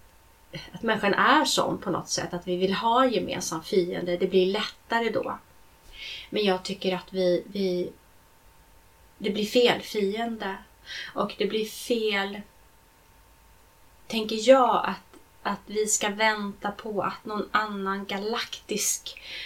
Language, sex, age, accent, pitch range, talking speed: Swedish, female, 30-49, native, 180-230 Hz, 135 wpm